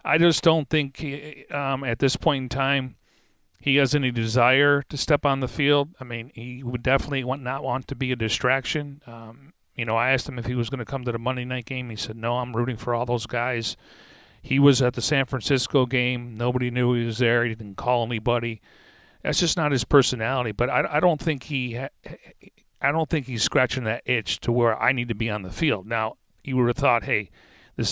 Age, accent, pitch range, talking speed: 40-59, American, 115-135 Hz, 230 wpm